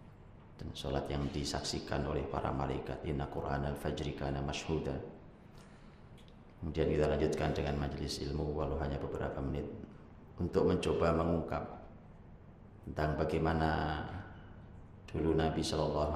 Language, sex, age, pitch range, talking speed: Indonesian, male, 30-49, 75-85 Hz, 110 wpm